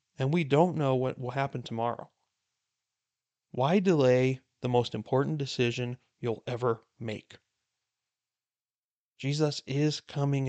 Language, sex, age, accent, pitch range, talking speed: English, male, 40-59, American, 115-140 Hz, 115 wpm